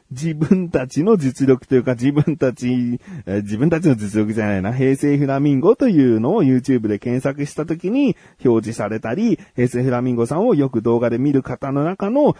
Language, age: Japanese, 40-59